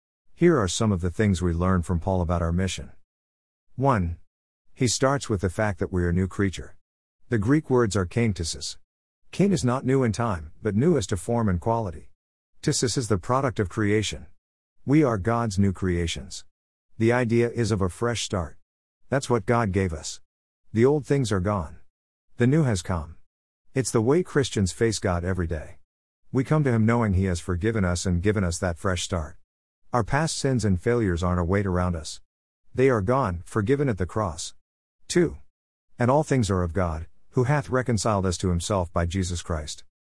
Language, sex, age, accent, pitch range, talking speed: English, male, 50-69, American, 85-115 Hz, 195 wpm